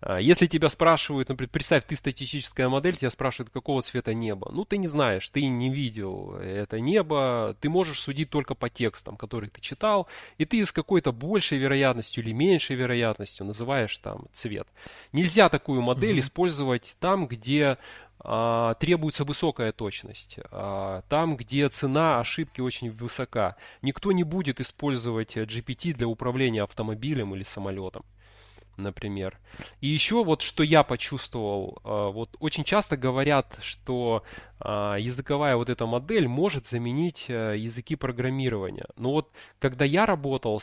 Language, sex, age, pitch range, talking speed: Russian, male, 20-39, 110-145 Hz, 135 wpm